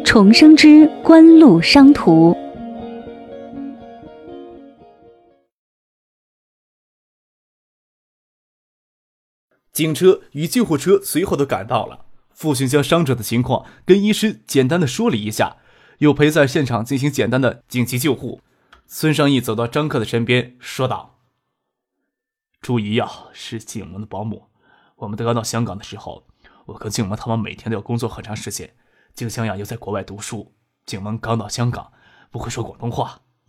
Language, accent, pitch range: Chinese, native, 110-150 Hz